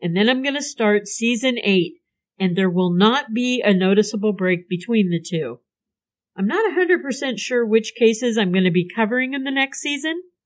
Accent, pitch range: American, 185-245 Hz